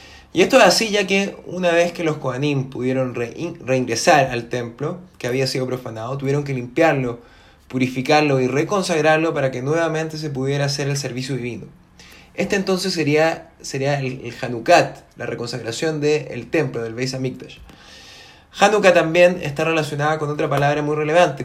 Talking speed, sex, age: 155 wpm, male, 20-39